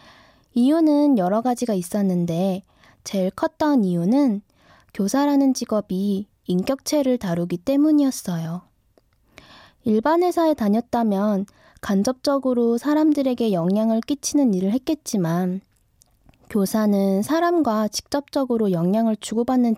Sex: female